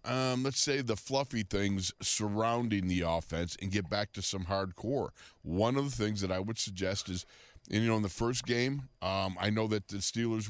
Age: 50-69